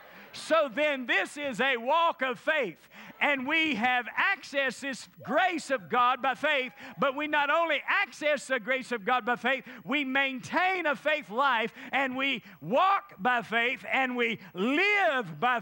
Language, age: English, 50-69